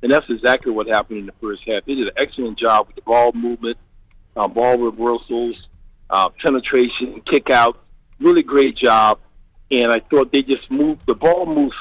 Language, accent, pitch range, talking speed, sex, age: English, American, 110-135 Hz, 190 wpm, male, 50-69